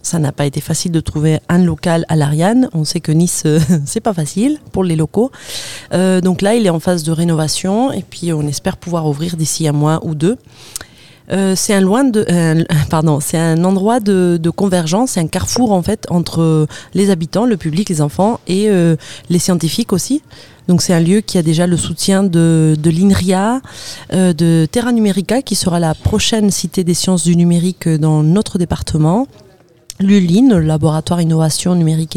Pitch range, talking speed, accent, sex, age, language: 160-200 Hz, 200 wpm, French, female, 30-49, French